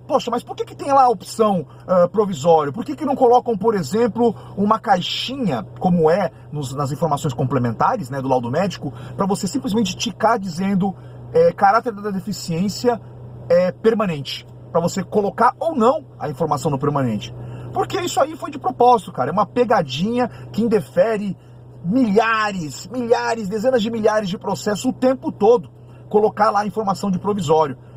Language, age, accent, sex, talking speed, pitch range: Portuguese, 40-59, Brazilian, male, 160 wpm, 150-230 Hz